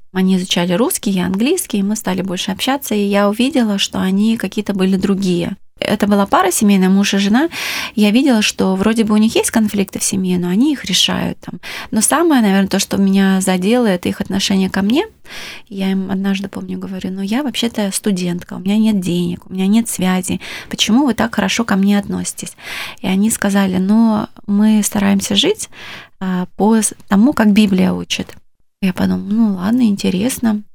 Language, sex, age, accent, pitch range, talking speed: Russian, female, 20-39, native, 190-225 Hz, 185 wpm